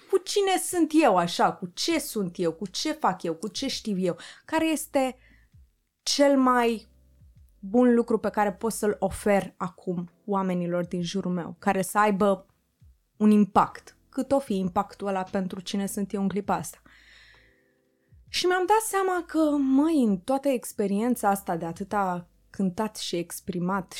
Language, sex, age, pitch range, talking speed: Romanian, female, 20-39, 185-255 Hz, 165 wpm